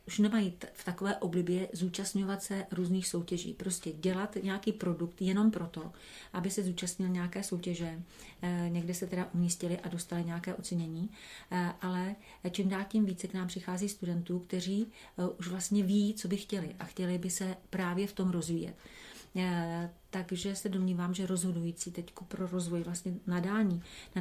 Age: 40-59